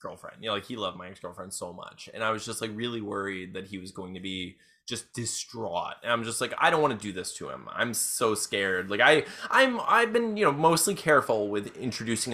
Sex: male